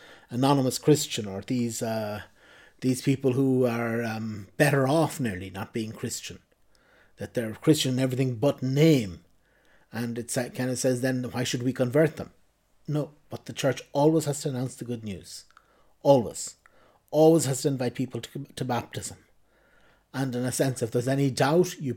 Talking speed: 170 wpm